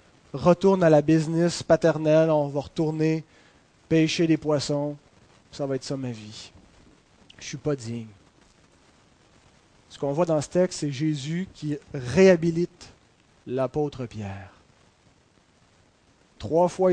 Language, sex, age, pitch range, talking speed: French, male, 30-49, 150-200 Hz, 130 wpm